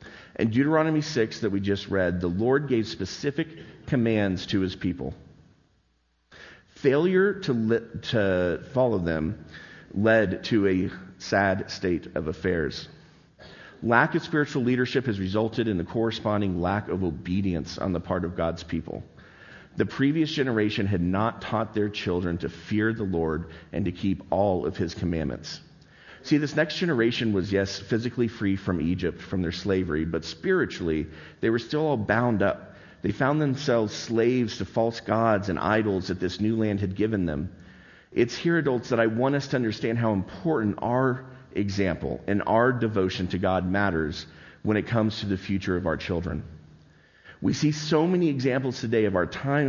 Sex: male